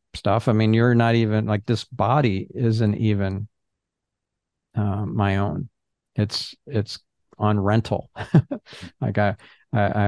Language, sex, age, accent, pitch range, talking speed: German, male, 50-69, American, 100-115 Hz, 125 wpm